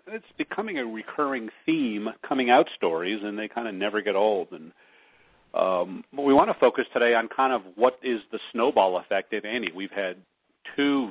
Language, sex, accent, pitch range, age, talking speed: English, male, American, 95-115 Hz, 40-59, 195 wpm